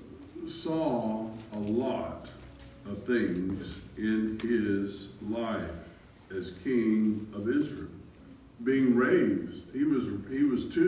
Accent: American